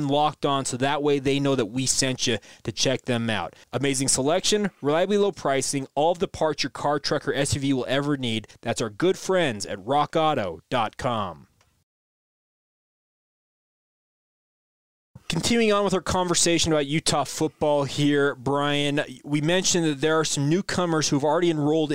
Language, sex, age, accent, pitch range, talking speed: English, male, 20-39, American, 135-165 Hz, 155 wpm